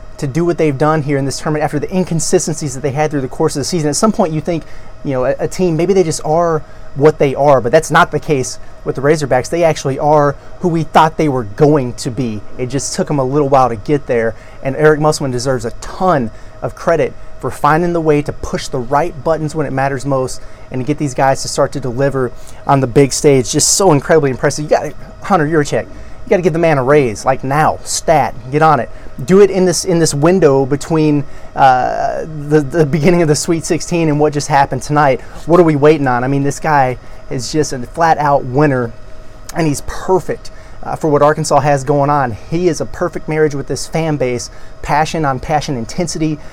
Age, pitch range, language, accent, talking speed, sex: 30-49, 130-155 Hz, English, American, 235 wpm, male